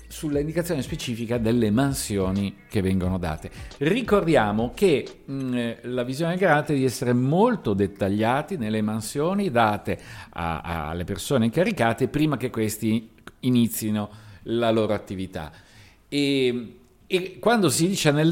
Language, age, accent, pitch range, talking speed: Italian, 50-69, native, 100-155 Hz, 120 wpm